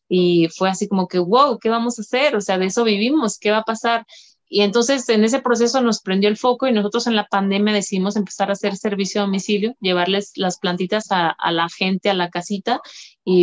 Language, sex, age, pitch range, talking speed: Spanish, female, 30-49, 185-215 Hz, 230 wpm